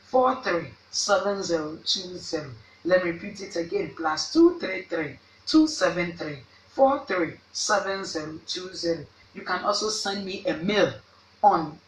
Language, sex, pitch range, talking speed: English, female, 115-185 Hz, 90 wpm